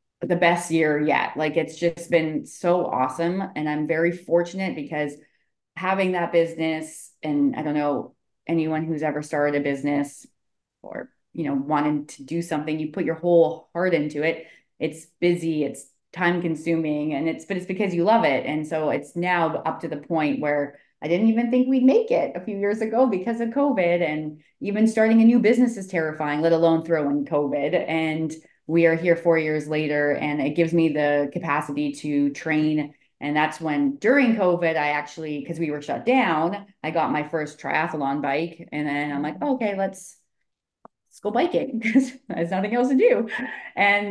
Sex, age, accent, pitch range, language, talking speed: female, 20-39, American, 150-180 Hz, English, 190 wpm